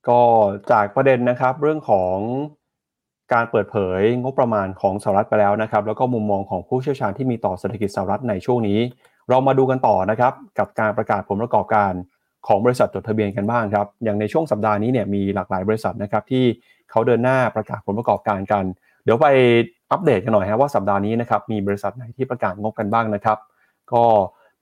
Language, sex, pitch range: Thai, male, 105-130 Hz